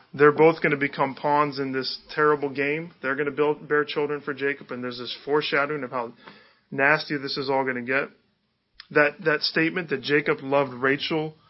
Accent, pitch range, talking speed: American, 135-155 Hz, 200 wpm